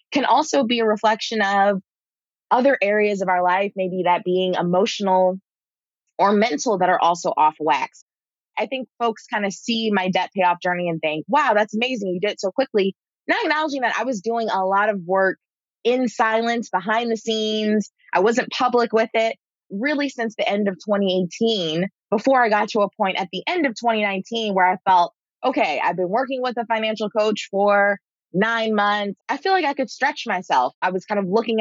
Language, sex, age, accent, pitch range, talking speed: English, female, 20-39, American, 190-235 Hz, 200 wpm